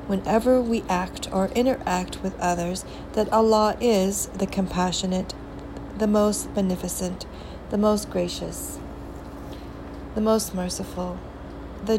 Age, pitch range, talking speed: 40-59, 180-205 Hz, 110 wpm